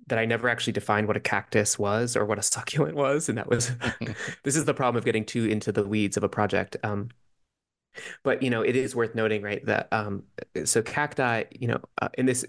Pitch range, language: 105-125 Hz, English